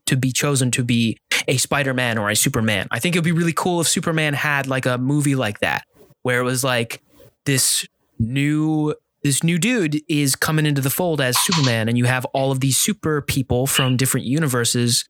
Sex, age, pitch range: male, 20-39, 130-155 Hz